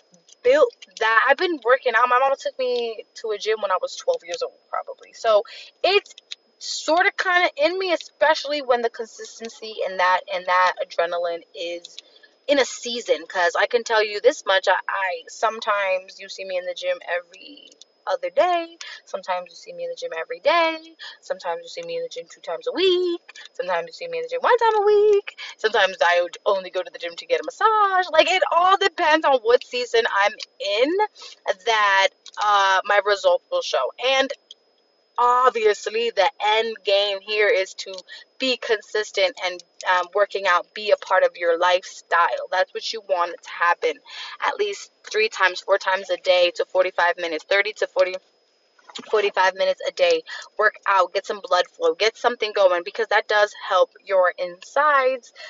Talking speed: 190 wpm